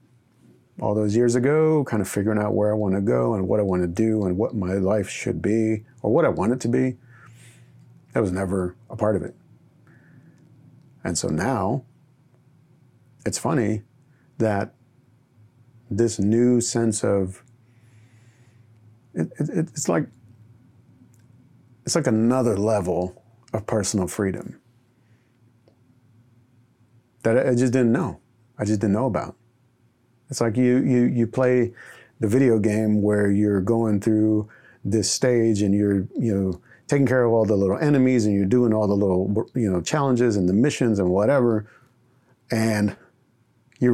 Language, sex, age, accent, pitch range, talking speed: English, male, 40-59, American, 110-130 Hz, 150 wpm